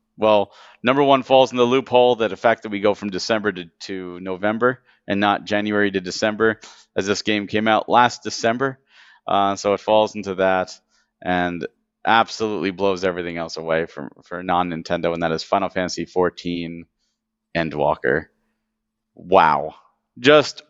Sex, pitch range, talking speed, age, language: male, 90-110 Hz, 155 wpm, 30-49, English